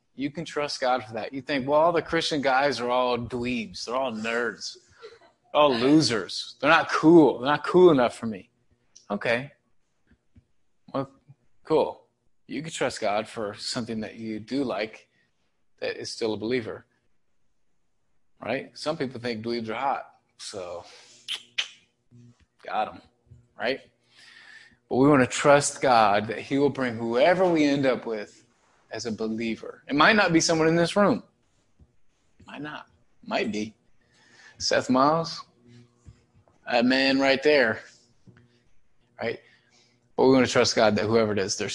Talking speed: 155 wpm